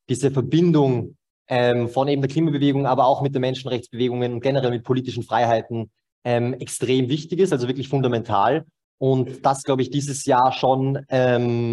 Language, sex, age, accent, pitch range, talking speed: German, male, 20-39, German, 115-135 Hz, 165 wpm